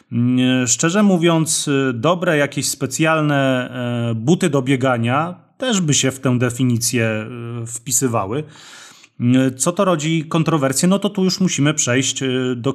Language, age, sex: Polish, 30-49, male